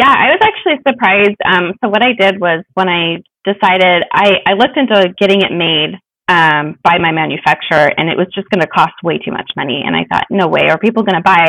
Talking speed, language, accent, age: 240 wpm, English, American, 20-39